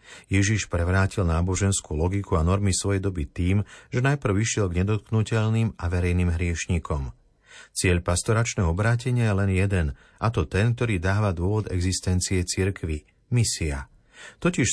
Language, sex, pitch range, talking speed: Slovak, male, 90-110 Hz, 140 wpm